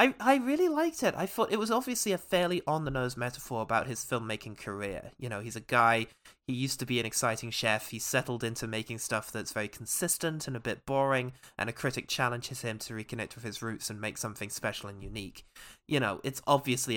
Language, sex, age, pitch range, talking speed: English, male, 20-39, 110-140 Hz, 220 wpm